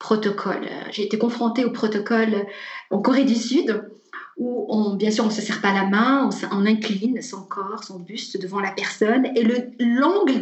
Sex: female